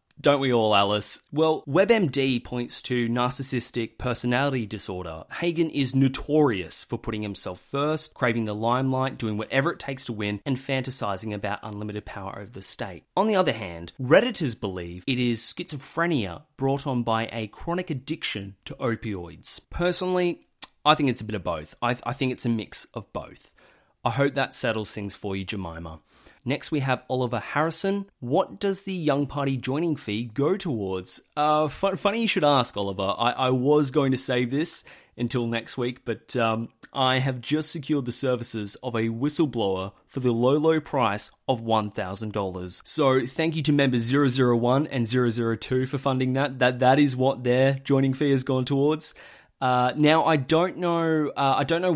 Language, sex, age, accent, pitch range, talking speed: English, male, 30-49, Australian, 115-145 Hz, 180 wpm